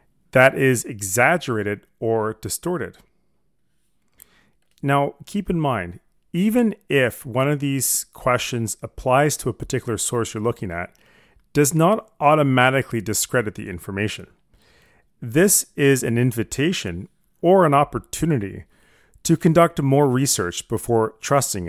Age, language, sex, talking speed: 40-59, English, male, 115 wpm